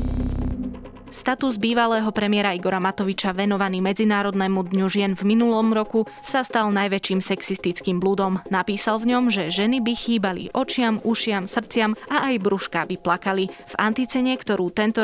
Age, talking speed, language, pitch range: 20-39, 145 wpm, Slovak, 190-220 Hz